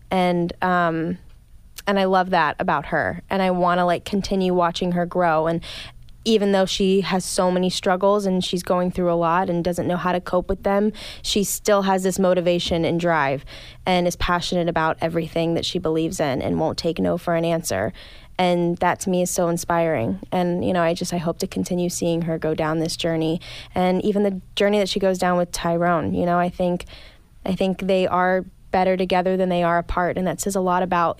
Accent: American